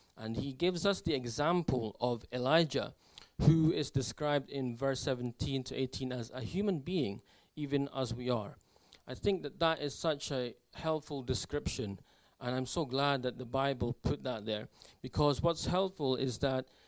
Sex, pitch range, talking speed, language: male, 125-155 Hz, 170 wpm, English